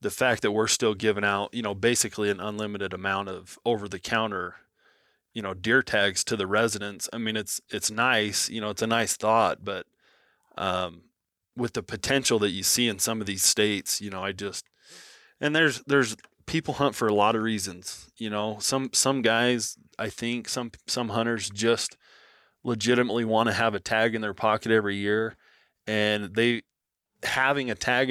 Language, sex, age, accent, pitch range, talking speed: English, male, 20-39, American, 100-115 Hz, 185 wpm